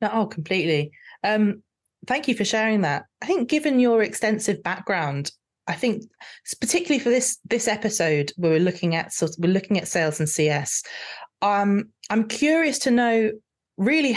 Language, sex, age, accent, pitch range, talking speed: English, female, 30-49, British, 175-240 Hz, 160 wpm